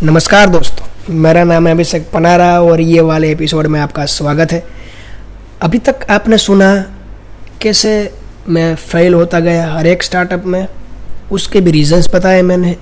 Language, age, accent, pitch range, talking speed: Hindi, 20-39, native, 115-190 Hz, 155 wpm